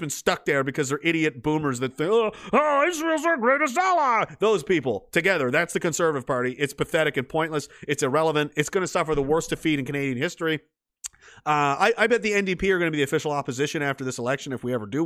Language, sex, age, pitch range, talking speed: English, male, 30-49, 145-215 Hz, 225 wpm